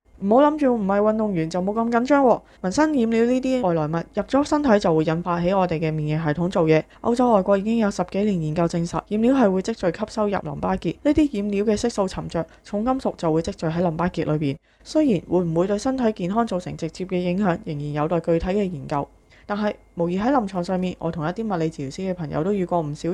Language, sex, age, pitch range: Chinese, female, 20-39, 160-210 Hz